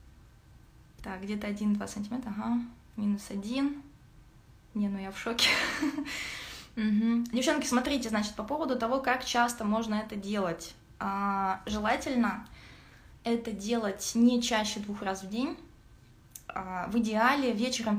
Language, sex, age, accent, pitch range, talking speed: Russian, female, 20-39, native, 195-235 Hz, 120 wpm